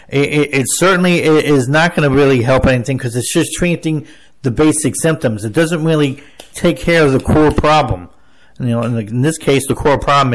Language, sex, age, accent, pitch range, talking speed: English, male, 50-69, American, 120-160 Hz, 215 wpm